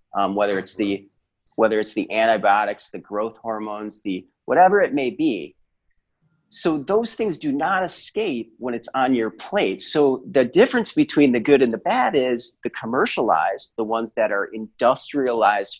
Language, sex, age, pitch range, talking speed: English, male, 30-49, 105-170 Hz, 165 wpm